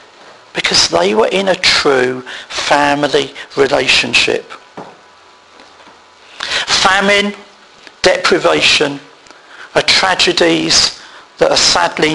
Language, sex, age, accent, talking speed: English, male, 50-69, British, 75 wpm